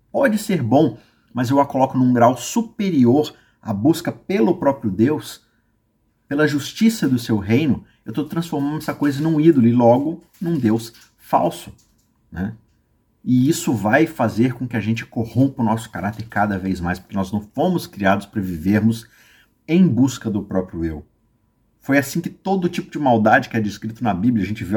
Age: 50-69